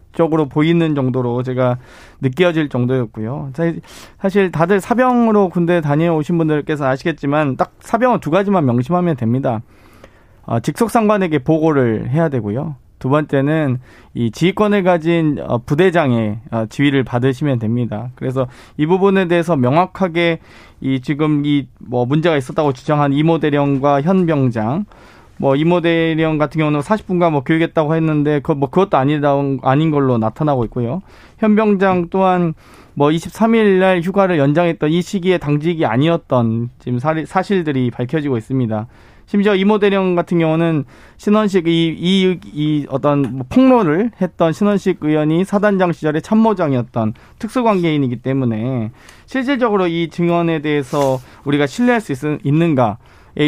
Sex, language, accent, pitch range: male, Korean, native, 130-175 Hz